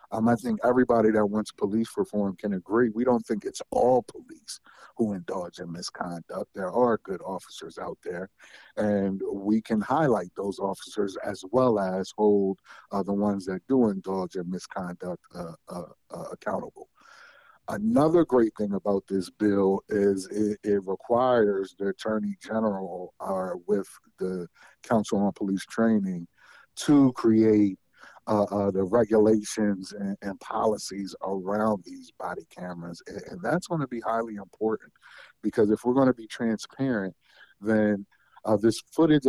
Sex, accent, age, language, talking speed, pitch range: male, American, 50-69, English, 155 wpm, 100-120 Hz